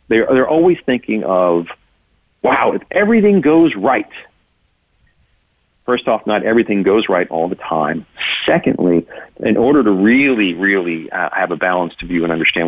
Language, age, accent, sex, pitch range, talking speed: English, 40-59, American, male, 100-145 Hz, 155 wpm